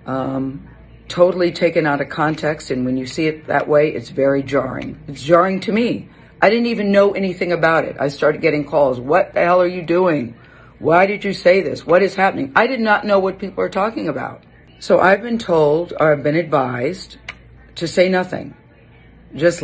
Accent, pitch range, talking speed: American, 140-175 Hz, 200 wpm